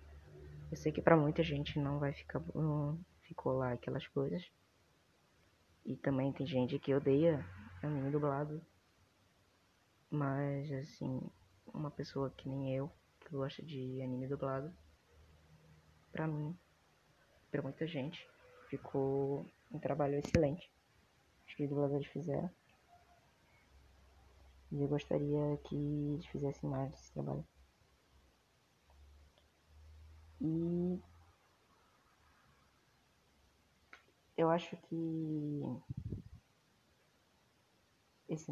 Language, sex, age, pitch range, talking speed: Portuguese, female, 20-39, 95-145 Hz, 95 wpm